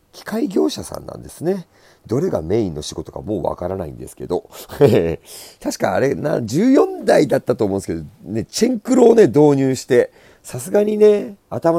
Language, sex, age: Japanese, male, 40-59